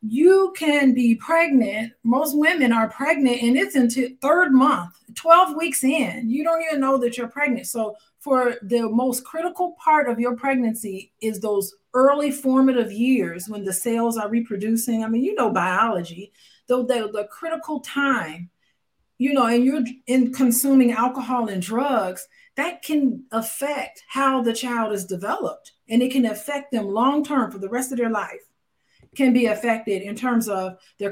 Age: 40-59